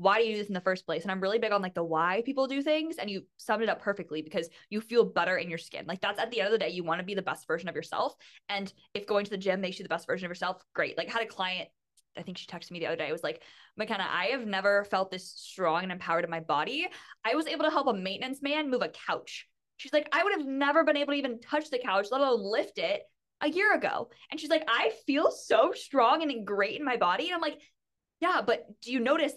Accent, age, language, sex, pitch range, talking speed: American, 20-39, English, female, 180-275 Hz, 290 wpm